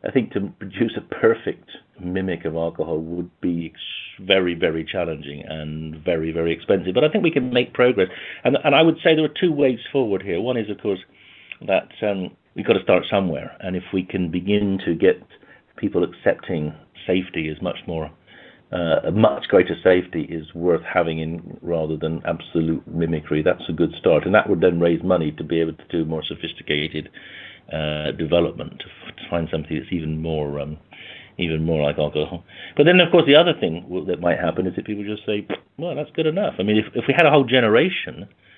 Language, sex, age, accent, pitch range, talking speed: English, male, 50-69, British, 80-125 Hz, 205 wpm